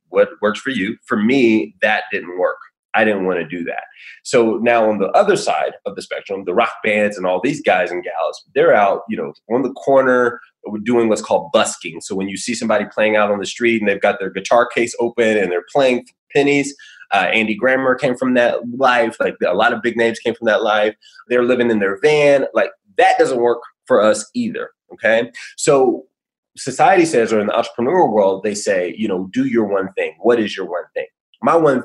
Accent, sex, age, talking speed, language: American, male, 20-39, 220 wpm, English